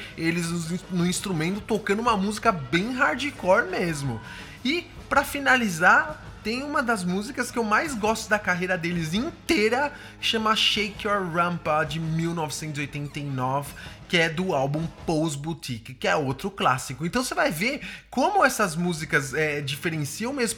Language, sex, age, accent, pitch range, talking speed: English, male, 20-39, Brazilian, 170-230 Hz, 145 wpm